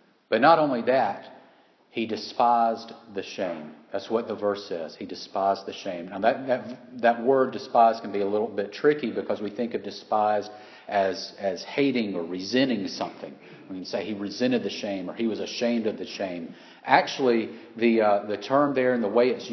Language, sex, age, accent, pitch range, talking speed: English, male, 40-59, American, 105-130 Hz, 200 wpm